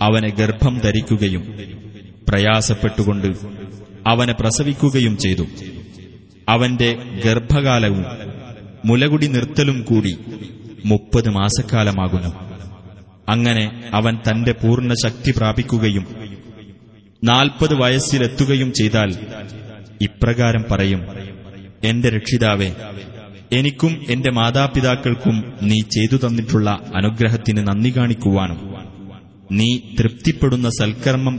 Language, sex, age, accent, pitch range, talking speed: Malayalam, male, 30-49, native, 100-120 Hz, 75 wpm